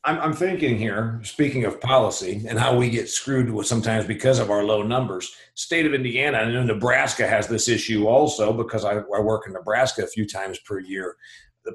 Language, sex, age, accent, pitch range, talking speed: English, male, 50-69, American, 120-180 Hz, 200 wpm